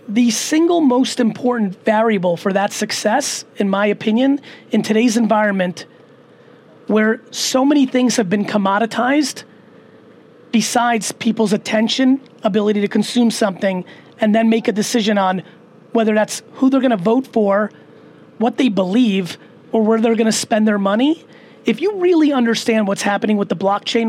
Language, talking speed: English, 150 wpm